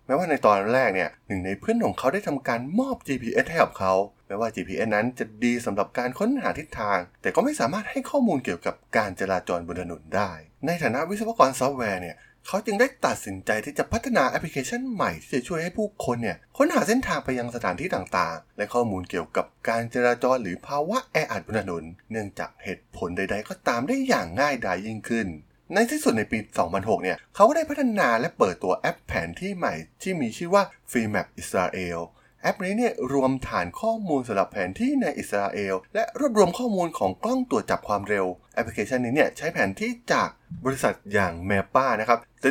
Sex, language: male, Thai